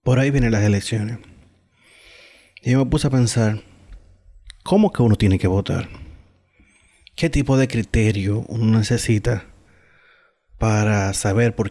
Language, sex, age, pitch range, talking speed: Spanish, male, 30-49, 100-120 Hz, 135 wpm